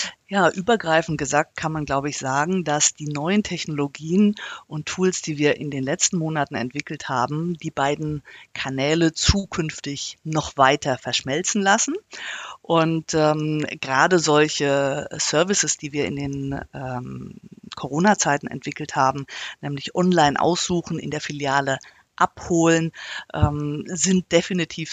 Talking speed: 130 wpm